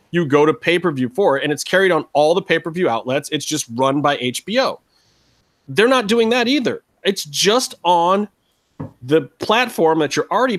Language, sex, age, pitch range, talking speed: English, male, 30-49, 125-160 Hz, 180 wpm